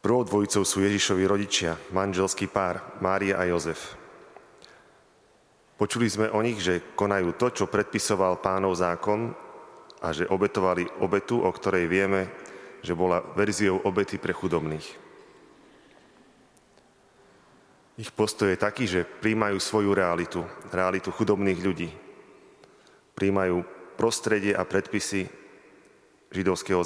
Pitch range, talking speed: 90-100 Hz, 110 wpm